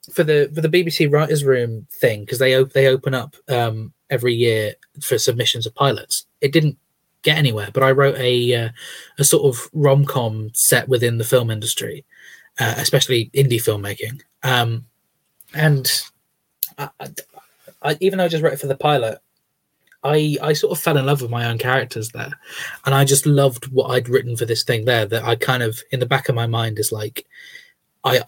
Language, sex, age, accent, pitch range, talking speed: English, male, 20-39, British, 115-145 Hz, 195 wpm